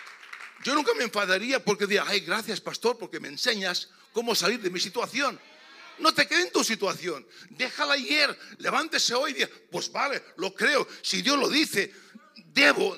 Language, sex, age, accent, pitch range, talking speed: Spanish, male, 60-79, Spanish, 200-280 Hz, 170 wpm